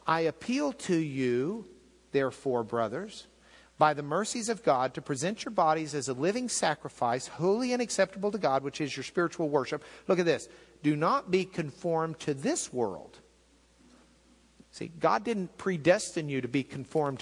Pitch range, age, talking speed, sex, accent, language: 130-195 Hz, 50-69, 165 wpm, male, American, English